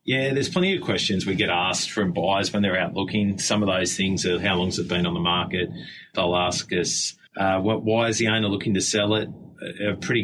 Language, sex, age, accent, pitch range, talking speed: English, male, 30-49, Australian, 95-110 Hz, 265 wpm